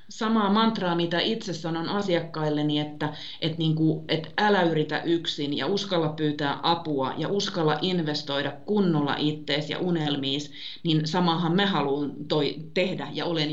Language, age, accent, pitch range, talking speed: Finnish, 30-49, native, 145-170 Hz, 140 wpm